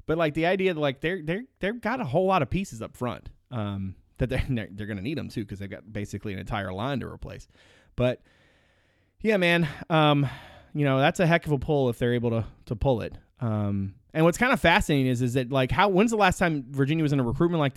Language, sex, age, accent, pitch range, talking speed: English, male, 30-49, American, 110-155 Hz, 250 wpm